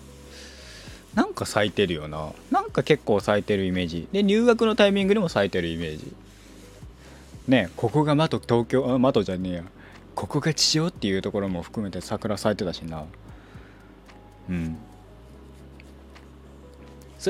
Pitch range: 80-120 Hz